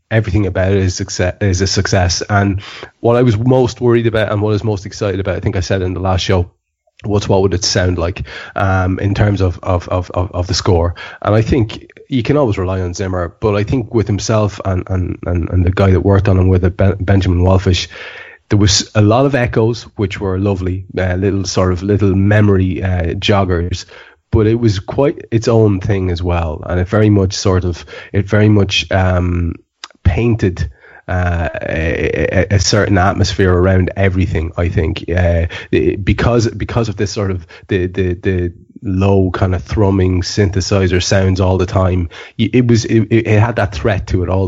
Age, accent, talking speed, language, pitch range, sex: 20-39, Irish, 200 wpm, English, 90-105 Hz, male